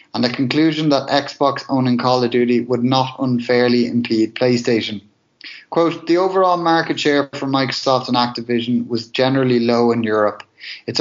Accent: Irish